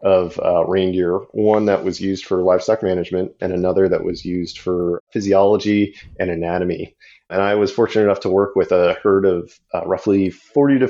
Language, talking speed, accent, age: English, 185 wpm, American, 30-49